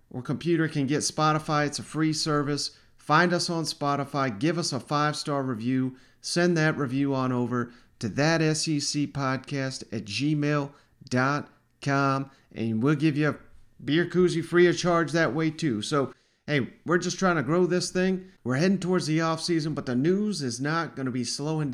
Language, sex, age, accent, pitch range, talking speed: English, male, 40-59, American, 135-165 Hz, 175 wpm